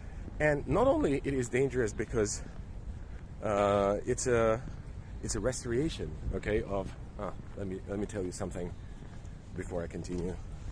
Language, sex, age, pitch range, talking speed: English, male, 30-49, 90-110 Hz, 145 wpm